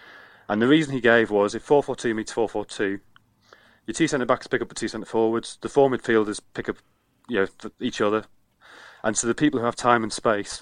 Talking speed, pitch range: 235 wpm, 105-120 Hz